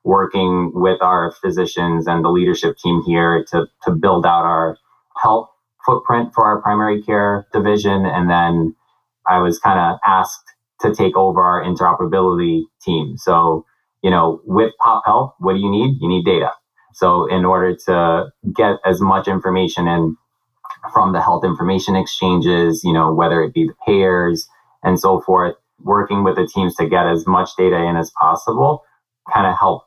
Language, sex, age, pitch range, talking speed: English, male, 20-39, 85-100 Hz, 175 wpm